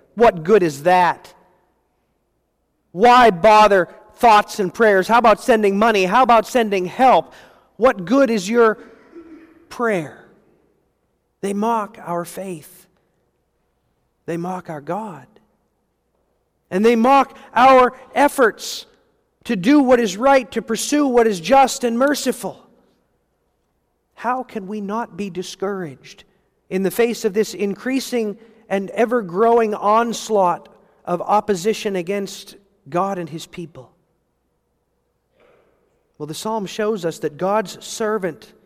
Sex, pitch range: male, 190-245 Hz